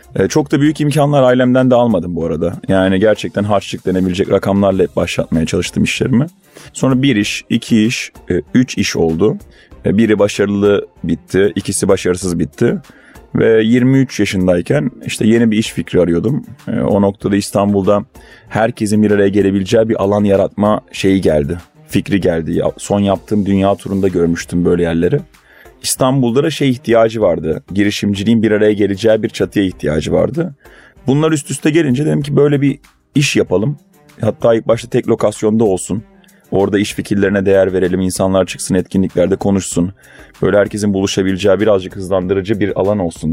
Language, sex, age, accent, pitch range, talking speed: Turkish, male, 30-49, native, 95-120 Hz, 150 wpm